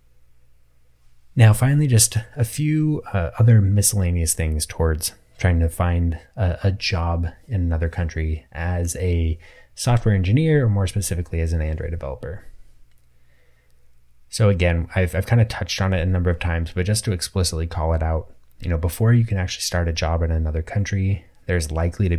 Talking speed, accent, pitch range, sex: 175 wpm, American, 80-100 Hz, male